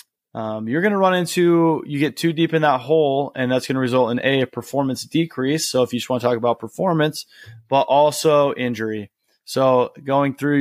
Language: English